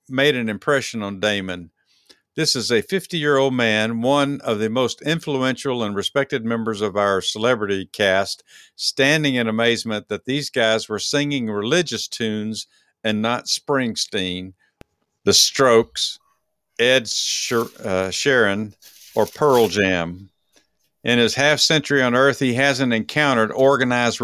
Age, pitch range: 50-69, 105-140 Hz